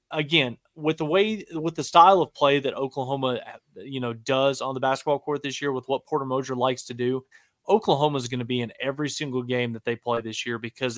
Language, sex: English, male